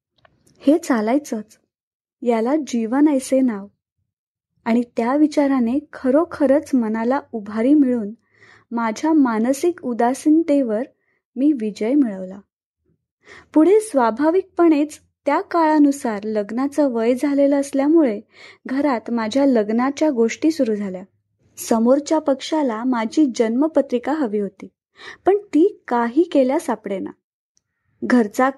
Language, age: Marathi, 20-39